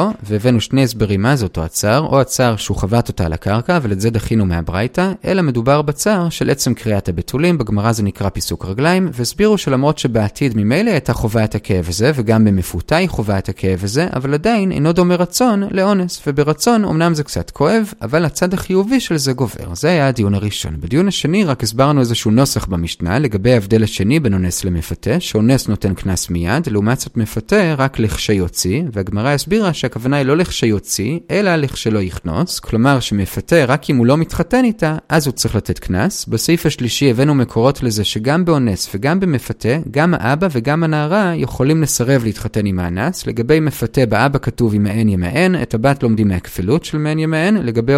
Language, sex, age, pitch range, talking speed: Hebrew, male, 30-49, 105-155 Hz, 165 wpm